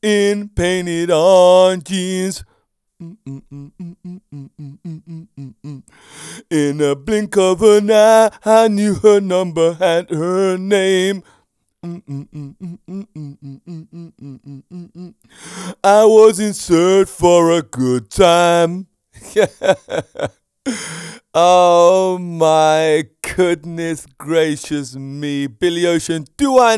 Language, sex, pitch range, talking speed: English, male, 150-195 Hz, 75 wpm